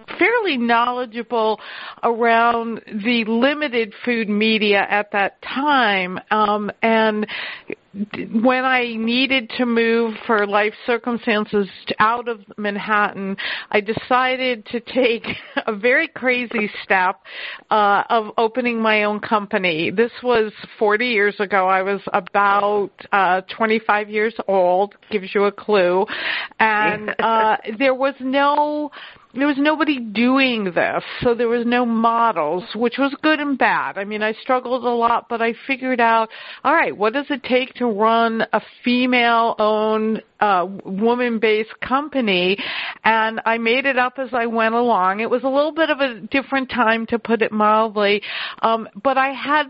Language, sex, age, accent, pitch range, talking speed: English, female, 50-69, American, 210-250 Hz, 145 wpm